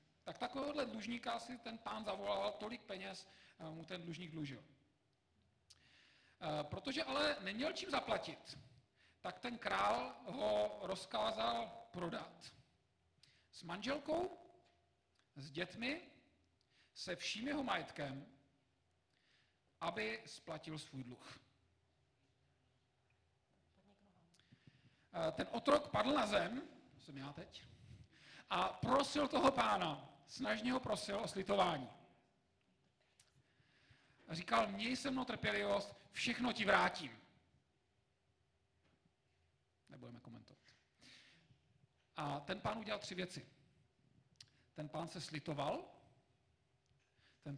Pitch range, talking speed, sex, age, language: 130-205 Hz, 95 wpm, male, 40-59, Czech